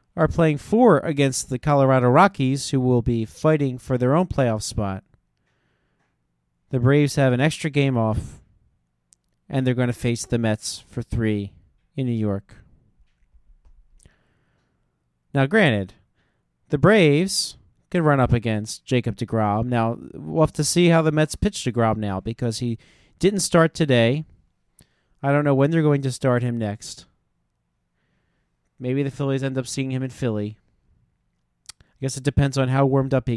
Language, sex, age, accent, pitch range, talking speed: English, male, 40-59, American, 105-140 Hz, 160 wpm